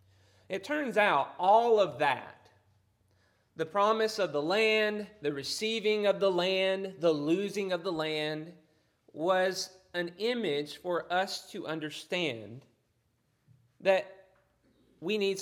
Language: English